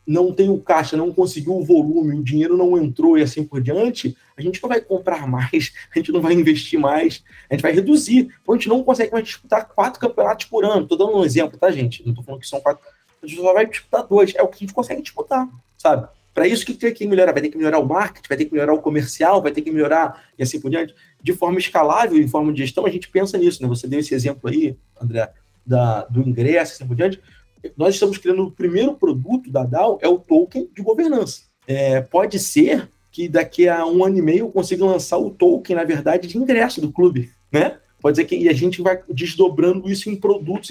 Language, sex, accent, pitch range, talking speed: Portuguese, male, Brazilian, 145-205 Hz, 240 wpm